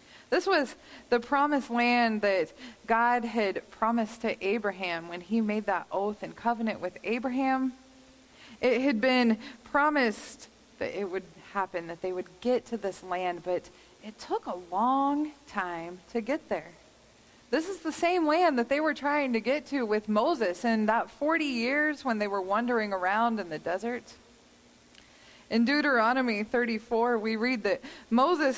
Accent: American